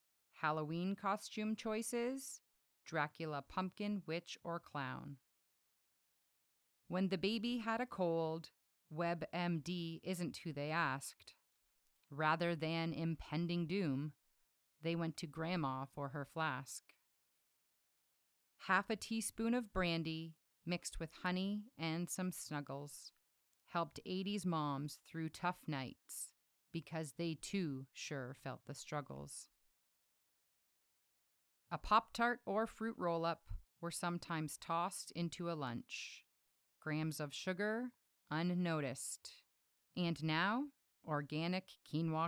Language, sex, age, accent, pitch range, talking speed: English, female, 30-49, American, 150-185 Hz, 105 wpm